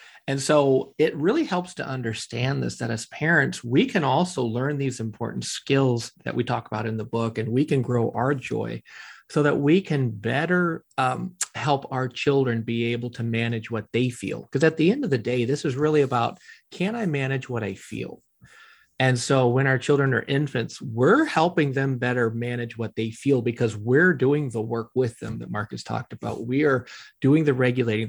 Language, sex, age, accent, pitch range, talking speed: English, male, 40-59, American, 120-145 Hz, 205 wpm